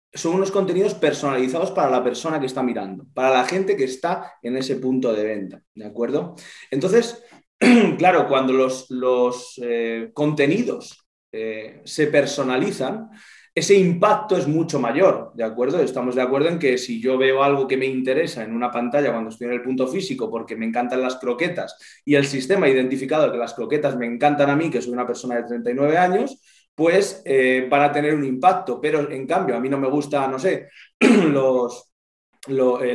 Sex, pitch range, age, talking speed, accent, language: male, 130-185 Hz, 20-39, 190 wpm, Spanish, Spanish